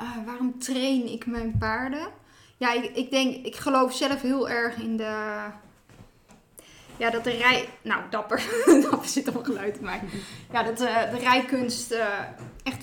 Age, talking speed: 20-39, 170 wpm